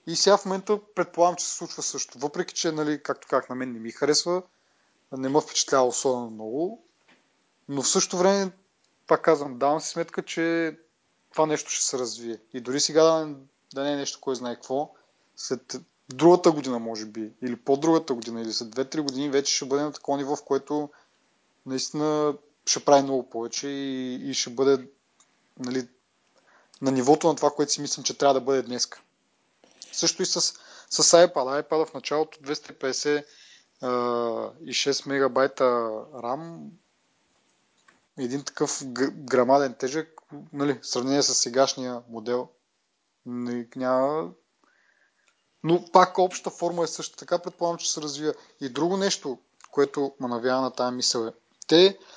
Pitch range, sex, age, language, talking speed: 130-160 Hz, male, 20-39, Bulgarian, 155 wpm